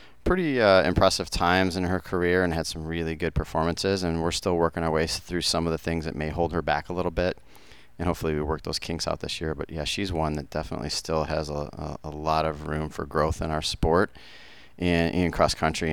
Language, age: English, 30-49